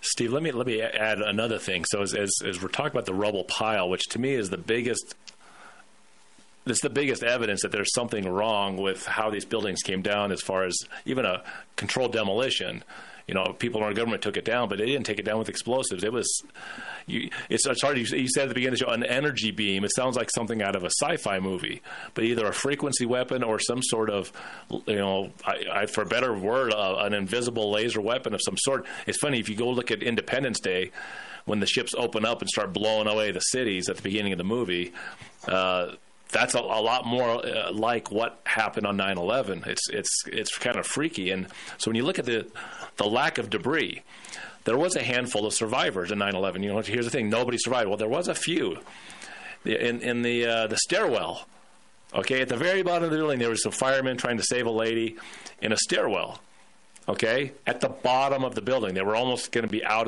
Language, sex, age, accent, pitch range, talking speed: English, male, 30-49, American, 100-125 Hz, 230 wpm